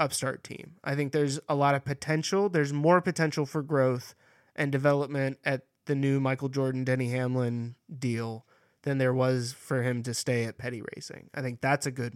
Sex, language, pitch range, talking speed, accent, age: male, English, 125-150 Hz, 190 wpm, American, 20-39